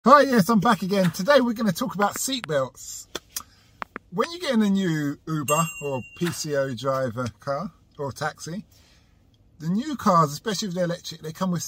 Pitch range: 150-240 Hz